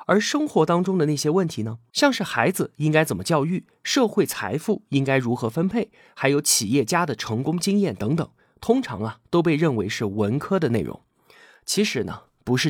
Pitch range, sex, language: 120-195 Hz, male, Chinese